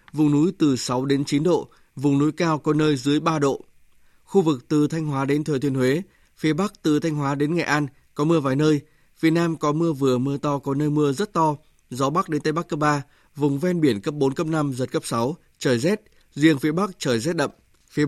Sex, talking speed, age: male, 245 wpm, 20-39